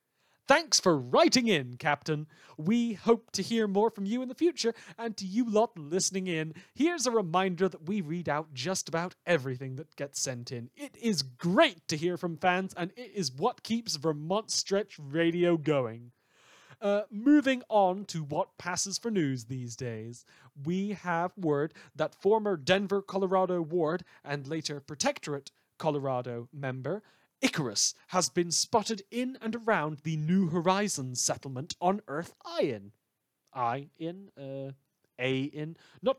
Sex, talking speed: male, 155 wpm